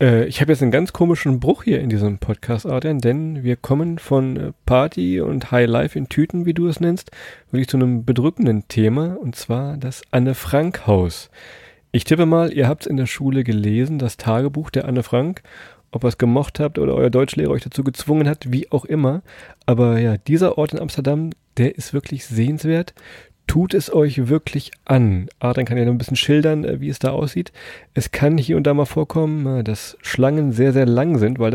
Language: German